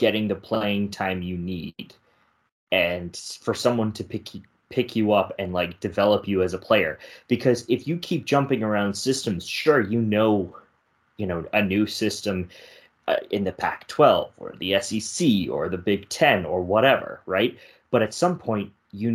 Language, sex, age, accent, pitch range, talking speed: English, male, 20-39, American, 100-120 Hz, 180 wpm